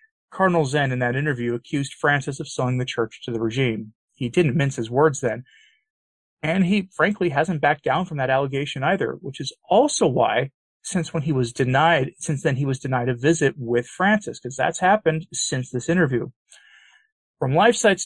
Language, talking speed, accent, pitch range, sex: English, 185 wpm, American, 130-170 Hz, male